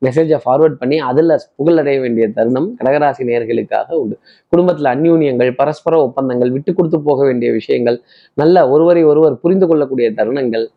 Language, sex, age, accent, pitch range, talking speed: Tamil, male, 20-39, native, 130-165 Hz, 140 wpm